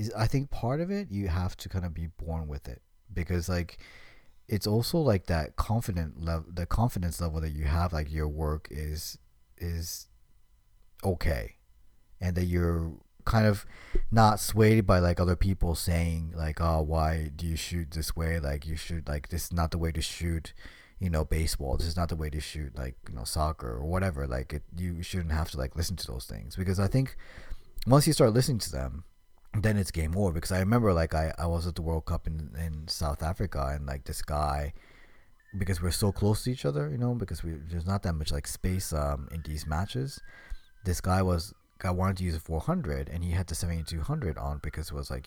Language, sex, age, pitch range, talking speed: English, male, 30-49, 80-100 Hz, 215 wpm